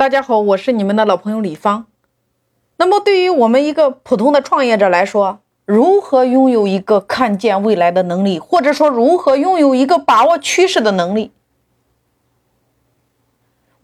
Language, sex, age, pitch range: Chinese, female, 30-49, 215-295 Hz